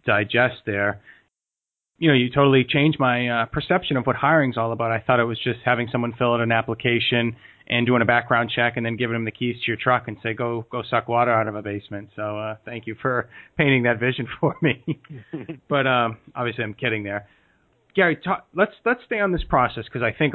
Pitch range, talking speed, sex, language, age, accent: 110-130 Hz, 230 wpm, male, English, 30-49, American